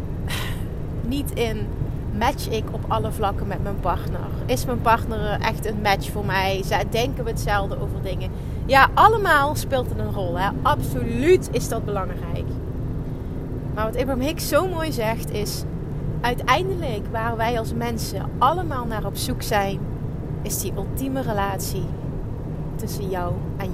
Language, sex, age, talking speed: Dutch, female, 30-49, 145 wpm